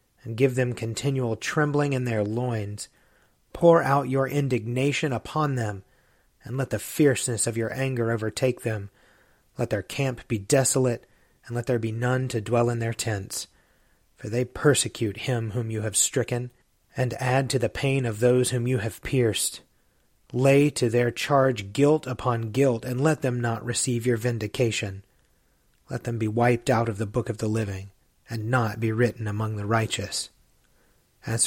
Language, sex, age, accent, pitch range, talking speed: English, male, 30-49, American, 110-135 Hz, 170 wpm